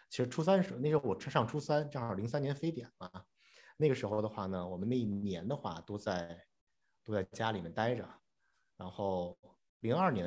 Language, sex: Chinese, male